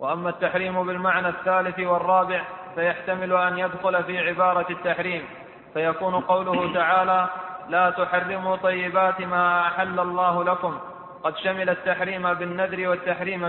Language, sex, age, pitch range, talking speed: Arabic, male, 20-39, 180-190 Hz, 115 wpm